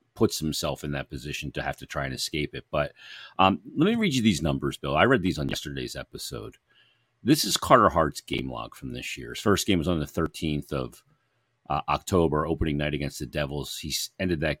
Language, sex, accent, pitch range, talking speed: English, male, American, 70-85 Hz, 220 wpm